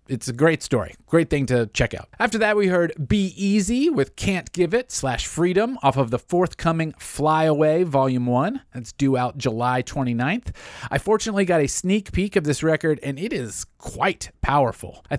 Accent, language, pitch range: American, English, 125-170 Hz